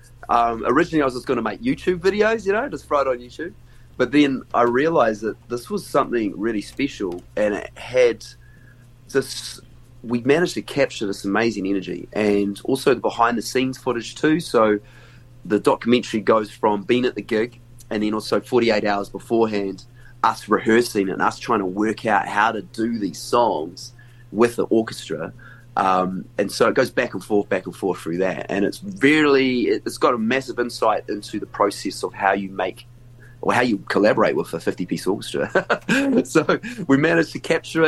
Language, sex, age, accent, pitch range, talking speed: English, male, 30-49, Australian, 110-130 Hz, 185 wpm